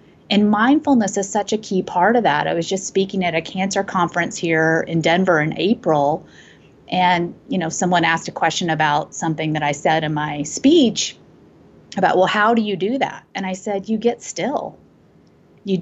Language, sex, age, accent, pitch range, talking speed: English, female, 30-49, American, 165-210 Hz, 195 wpm